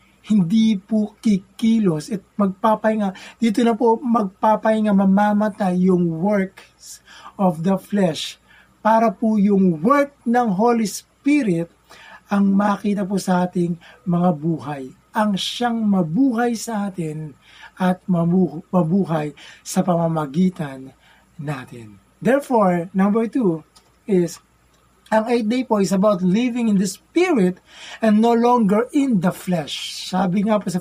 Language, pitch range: Filipino, 185-230 Hz